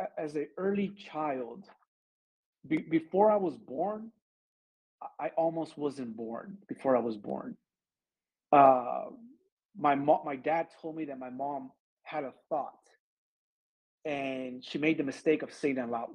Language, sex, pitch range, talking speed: English, male, 140-175 Hz, 145 wpm